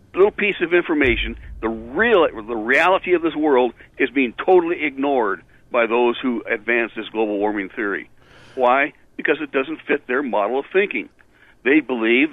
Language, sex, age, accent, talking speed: English, male, 60-79, American, 165 wpm